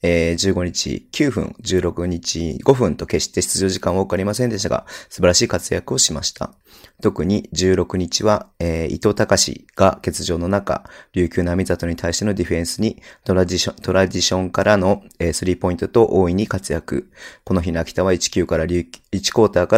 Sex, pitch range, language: male, 90-100 Hz, Japanese